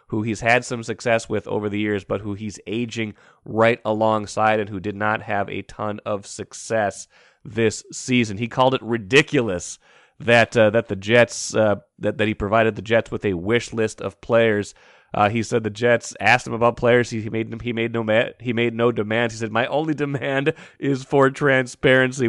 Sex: male